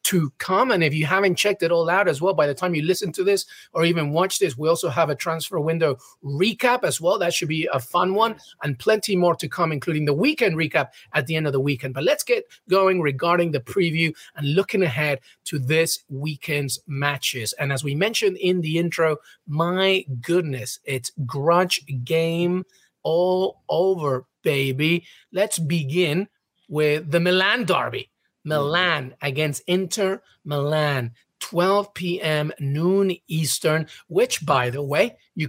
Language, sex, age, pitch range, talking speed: English, male, 30-49, 145-190 Hz, 170 wpm